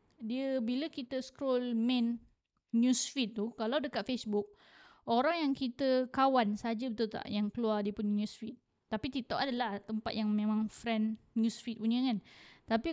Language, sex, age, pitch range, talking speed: Malay, female, 20-39, 220-270 Hz, 155 wpm